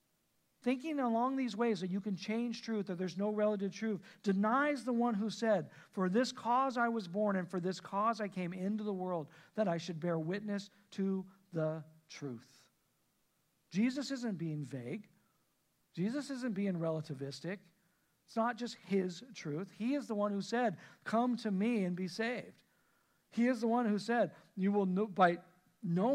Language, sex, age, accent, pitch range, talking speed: English, male, 50-69, American, 175-225 Hz, 175 wpm